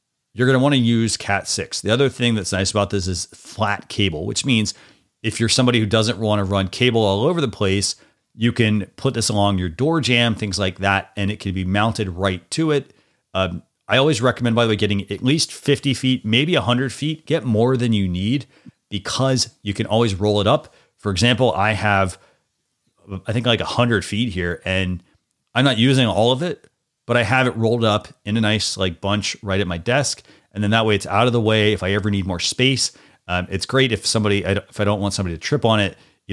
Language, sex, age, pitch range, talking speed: English, male, 30-49, 95-120 Hz, 235 wpm